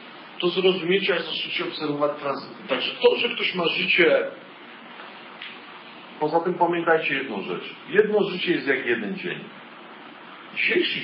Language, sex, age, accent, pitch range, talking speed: Polish, male, 40-59, native, 125-200 Hz, 130 wpm